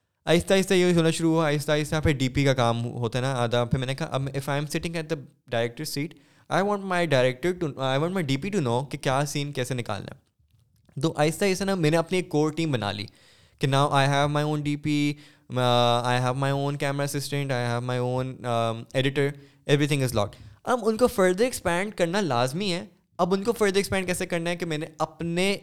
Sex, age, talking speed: male, 20-39, 200 wpm